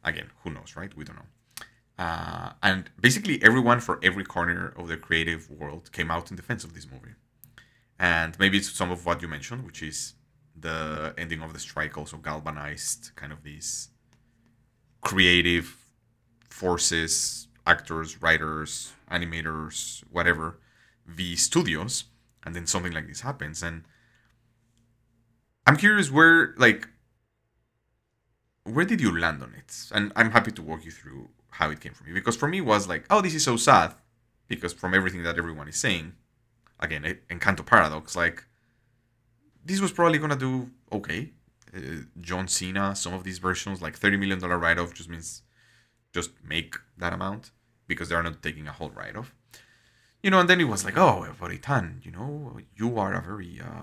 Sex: male